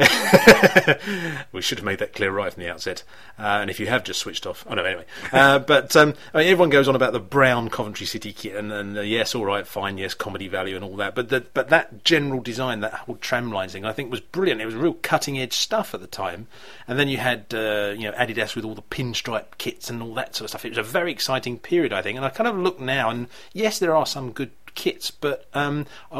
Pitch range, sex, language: 110-140 Hz, male, English